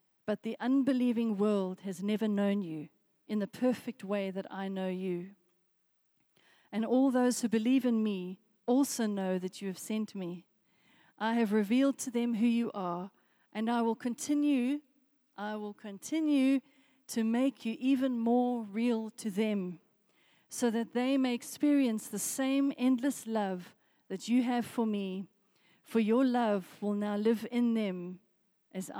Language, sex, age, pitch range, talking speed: English, female, 40-59, 195-245 Hz, 155 wpm